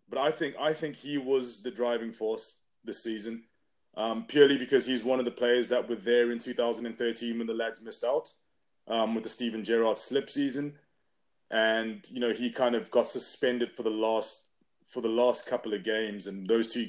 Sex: male